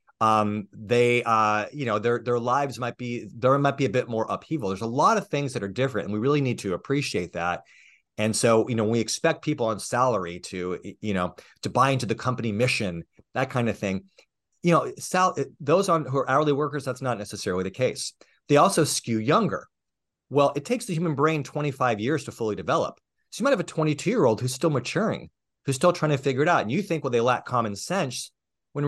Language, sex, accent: English, male, American